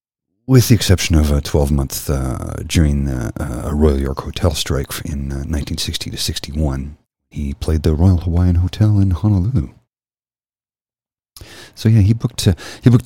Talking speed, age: 160 wpm, 40-59